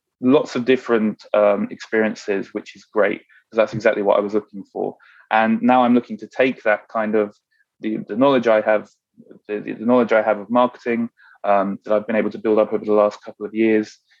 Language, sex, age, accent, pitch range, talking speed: English, male, 20-39, British, 105-115 Hz, 215 wpm